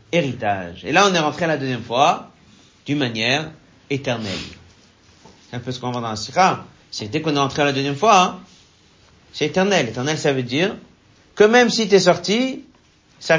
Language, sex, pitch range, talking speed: French, male, 140-175 Hz, 195 wpm